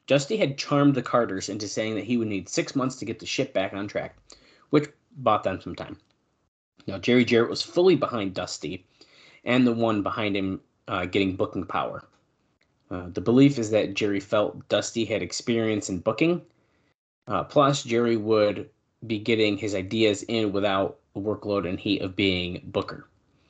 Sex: male